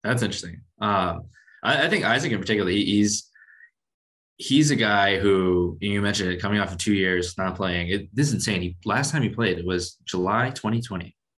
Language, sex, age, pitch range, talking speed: English, male, 20-39, 90-110 Hz, 195 wpm